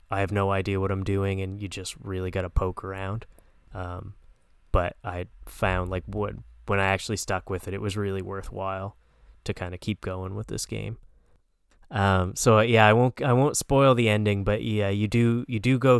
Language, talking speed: English, 215 wpm